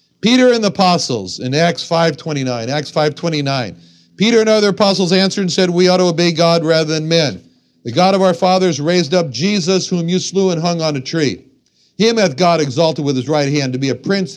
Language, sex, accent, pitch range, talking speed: English, male, American, 135-185 Hz, 215 wpm